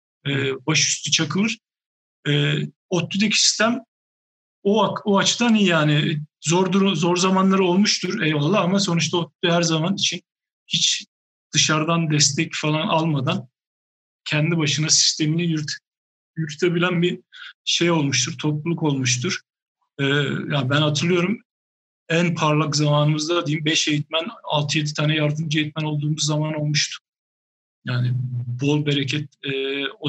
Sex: male